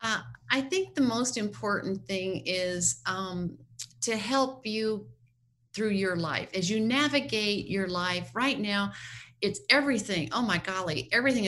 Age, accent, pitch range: 40-59, American, 165-215 Hz